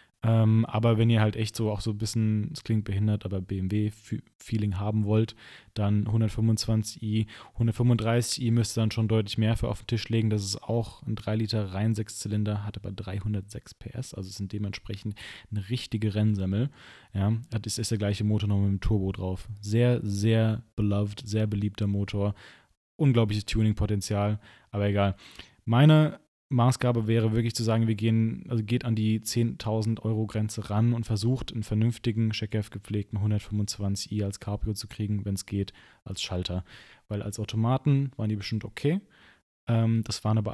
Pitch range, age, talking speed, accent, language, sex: 100-115 Hz, 20-39, 160 wpm, German, German, male